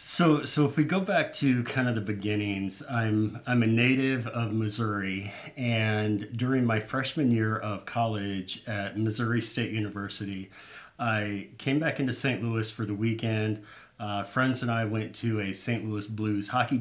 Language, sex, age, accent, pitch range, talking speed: English, male, 50-69, American, 105-120 Hz, 170 wpm